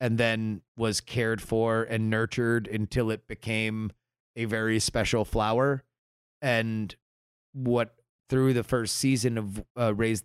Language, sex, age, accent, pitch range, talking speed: English, male, 30-49, American, 110-125 Hz, 135 wpm